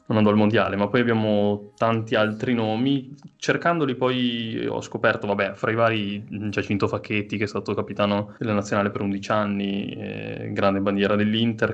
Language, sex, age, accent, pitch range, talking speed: Italian, male, 20-39, native, 105-130 Hz, 170 wpm